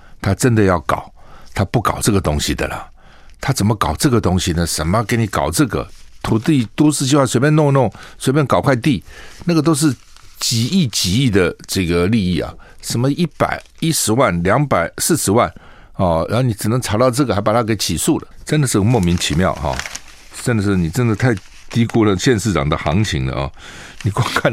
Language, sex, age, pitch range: Chinese, male, 60-79, 85-130 Hz